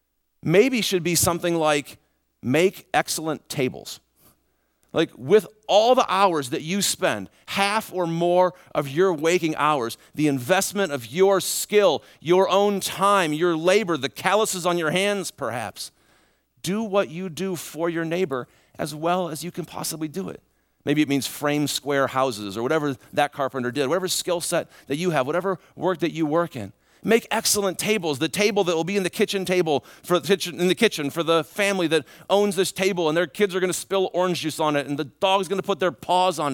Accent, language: American, English